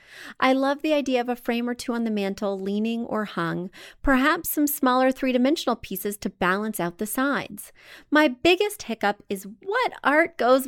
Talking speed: 180 wpm